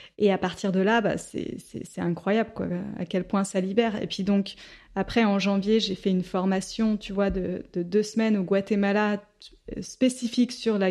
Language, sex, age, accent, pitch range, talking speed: French, female, 20-39, French, 195-235 Hz, 205 wpm